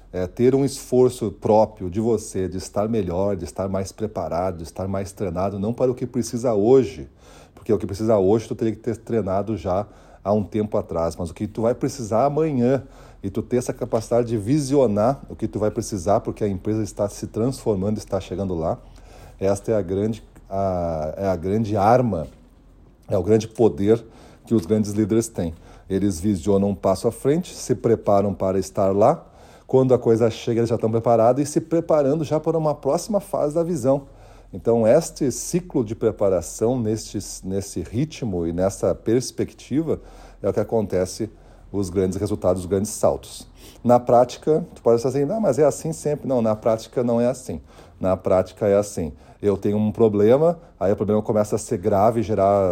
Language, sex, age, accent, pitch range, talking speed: Portuguese, male, 40-59, Brazilian, 100-125 Hz, 190 wpm